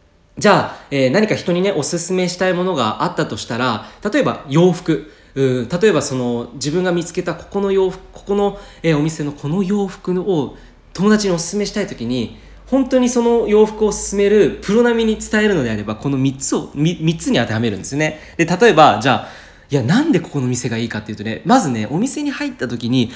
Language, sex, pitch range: Japanese, male, 130-210 Hz